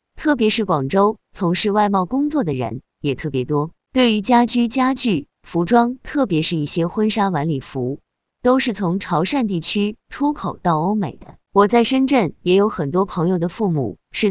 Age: 20-39